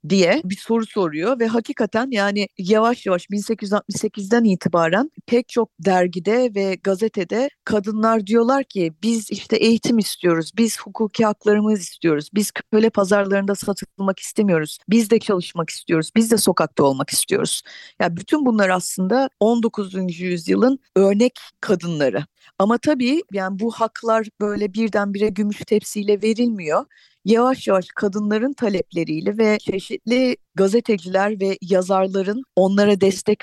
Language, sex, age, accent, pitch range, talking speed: Turkish, female, 40-59, native, 185-225 Hz, 125 wpm